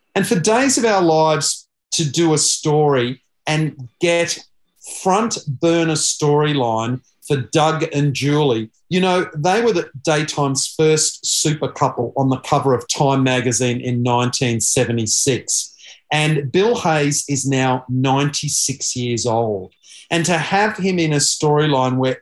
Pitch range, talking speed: 125-150 Hz, 140 wpm